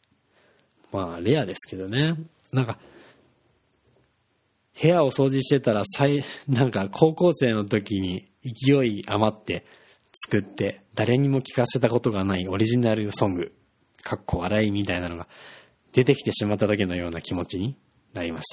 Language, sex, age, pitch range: Japanese, male, 20-39, 100-140 Hz